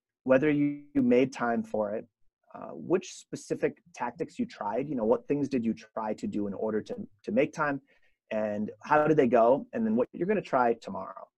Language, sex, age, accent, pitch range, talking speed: English, male, 30-49, American, 110-165 Hz, 215 wpm